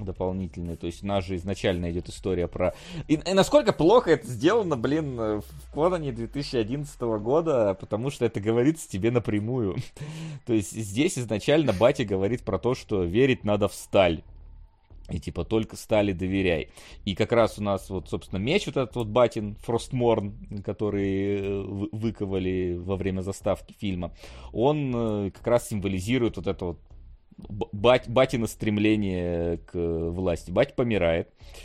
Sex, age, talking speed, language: male, 30-49, 150 wpm, Russian